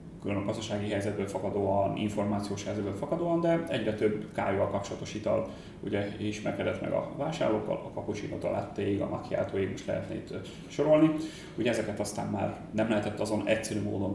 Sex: male